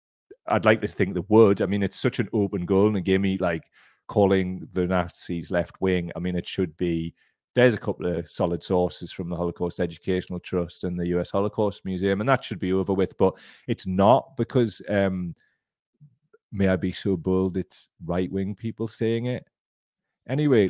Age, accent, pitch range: 30-49, British, 90-105 Hz